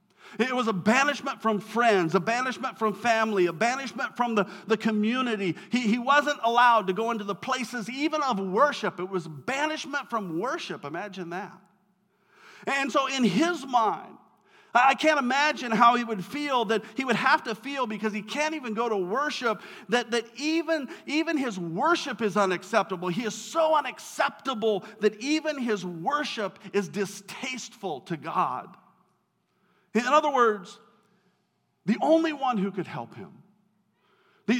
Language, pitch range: English, 195-260 Hz